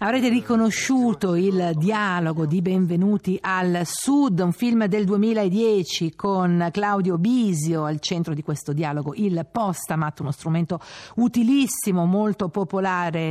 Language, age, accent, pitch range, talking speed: Italian, 50-69, native, 160-205 Hz, 120 wpm